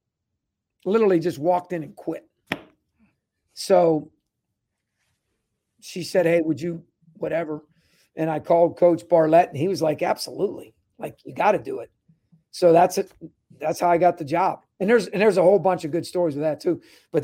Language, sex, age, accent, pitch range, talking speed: English, male, 50-69, American, 170-220 Hz, 180 wpm